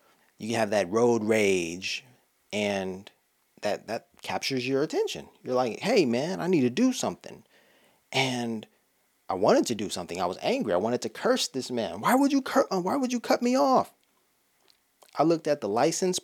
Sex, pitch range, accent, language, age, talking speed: male, 105-145 Hz, American, English, 30-49, 185 wpm